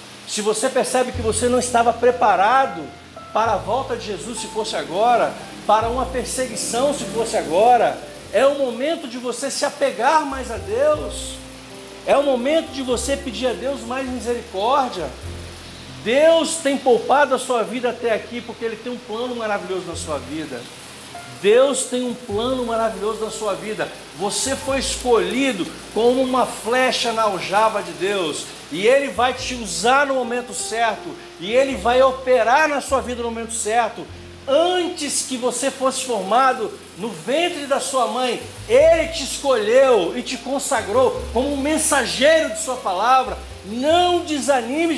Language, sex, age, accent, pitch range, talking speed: Portuguese, male, 60-79, Brazilian, 235-295 Hz, 160 wpm